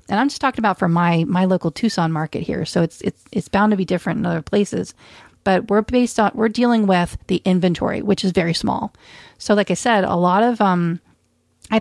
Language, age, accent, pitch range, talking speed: English, 40-59, American, 170-210 Hz, 230 wpm